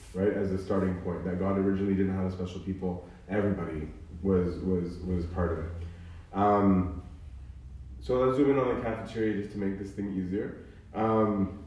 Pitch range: 95-110 Hz